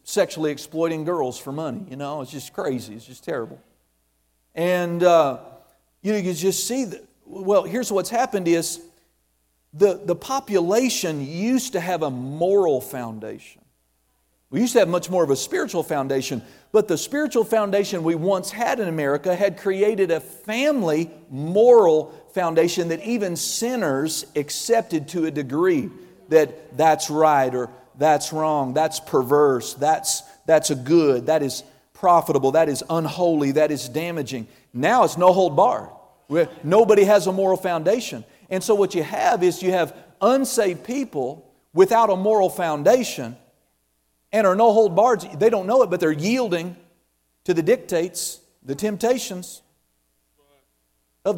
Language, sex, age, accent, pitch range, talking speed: English, male, 50-69, American, 145-205 Hz, 145 wpm